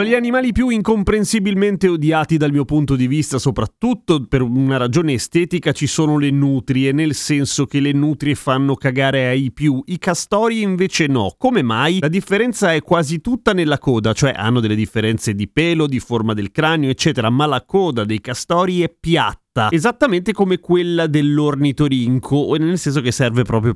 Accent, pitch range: native, 130-180 Hz